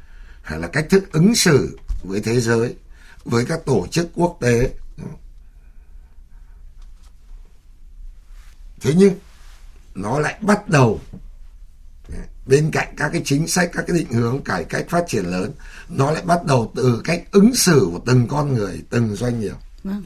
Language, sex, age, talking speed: Vietnamese, male, 60-79, 155 wpm